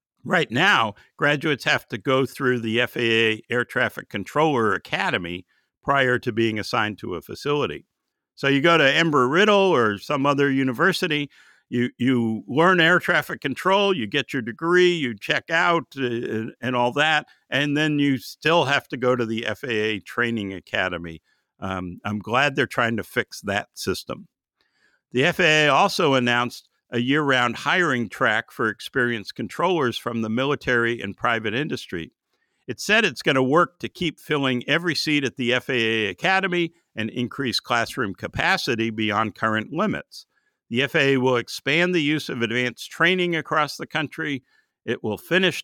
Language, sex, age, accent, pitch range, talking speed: English, male, 60-79, American, 120-155 Hz, 160 wpm